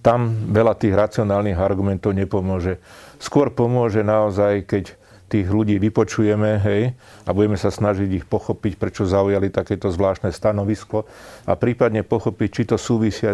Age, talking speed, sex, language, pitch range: 40-59, 140 wpm, male, Slovak, 100-110 Hz